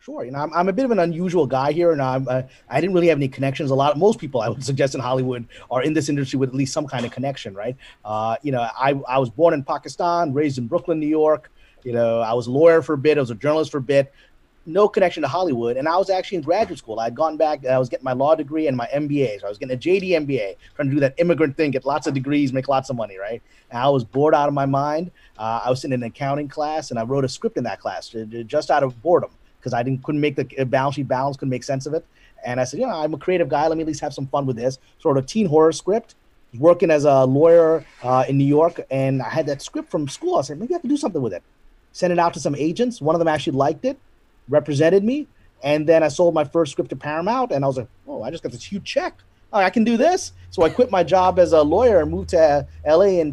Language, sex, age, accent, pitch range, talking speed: English, male, 30-49, American, 135-170 Hz, 290 wpm